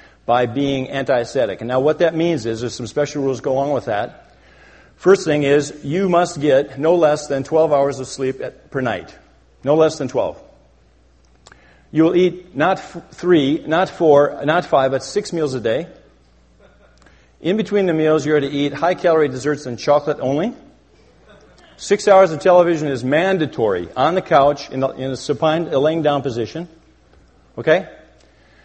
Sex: male